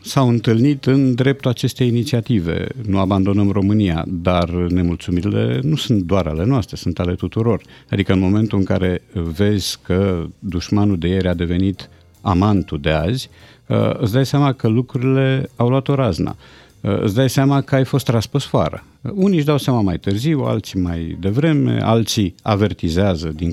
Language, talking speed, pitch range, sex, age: Romanian, 165 wpm, 95-125 Hz, male, 50-69